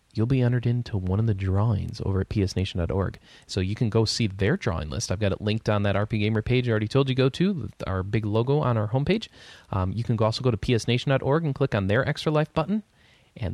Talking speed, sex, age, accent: 240 wpm, male, 20-39, American